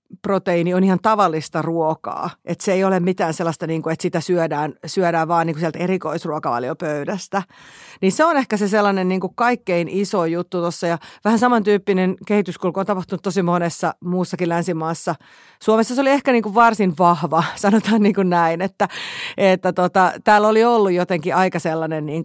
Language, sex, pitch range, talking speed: Finnish, female, 170-205 Hz, 180 wpm